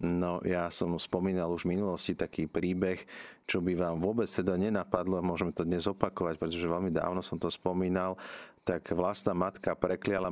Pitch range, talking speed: 85-95 Hz, 175 wpm